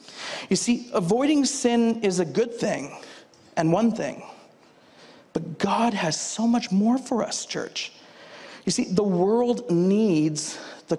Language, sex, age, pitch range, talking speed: English, male, 40-59, 165-220 Hz, 140 wpm